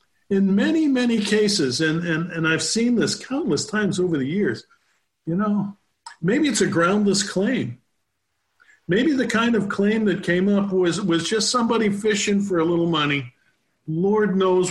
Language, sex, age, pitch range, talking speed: English, male, 50-69, 140-190 Hz, 165 wpm